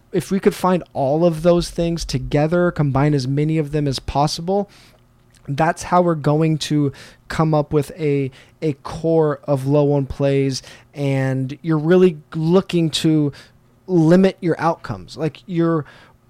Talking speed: 150 wpm